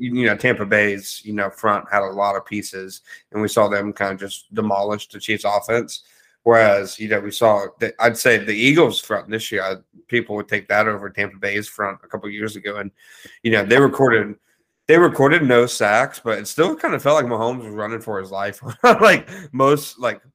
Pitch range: 100-115 Hz